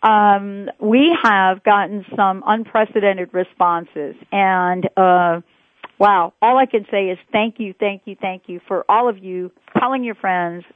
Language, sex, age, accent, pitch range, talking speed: English, female, 50-69, American, 175-225 Hz, 155 wpm